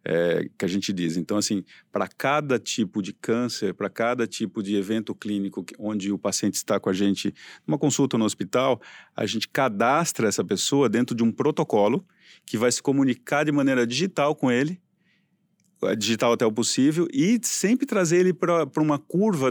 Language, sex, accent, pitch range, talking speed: English, male, Brazilian, 105-145 Hz, 180 wpm